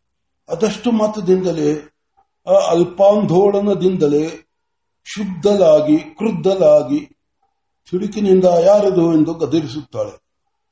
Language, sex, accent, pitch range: Marathi, male, native, 155-205 Hz